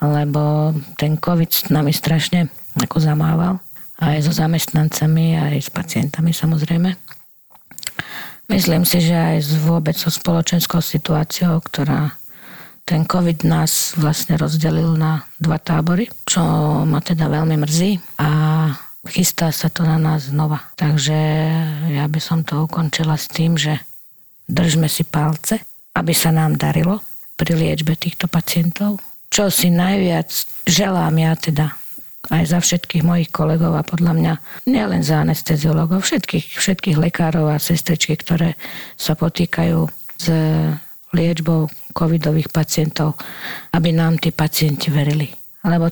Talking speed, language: 125 wpm, Slovak